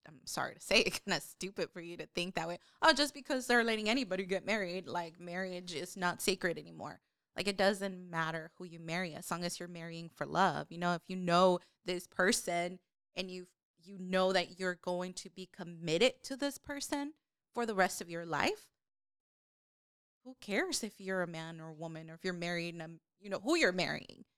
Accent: American